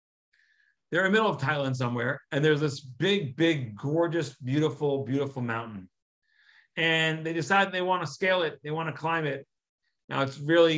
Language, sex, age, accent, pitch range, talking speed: English, male, 40-59, American, 125-160 Hz, 165 wpm